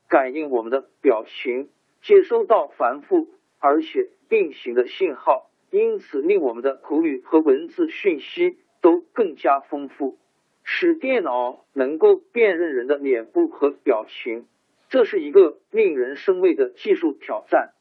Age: 50-69